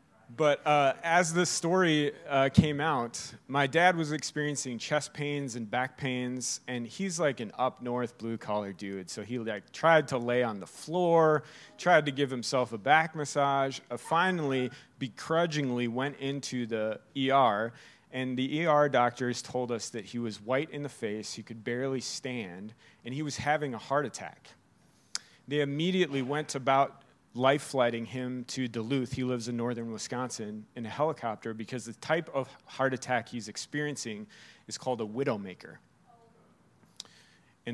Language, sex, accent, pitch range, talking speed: English, male, American, 120-145 Hz, 160 wpm